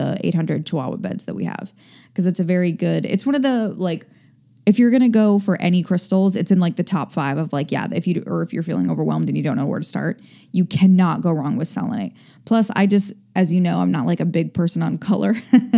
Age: 10-29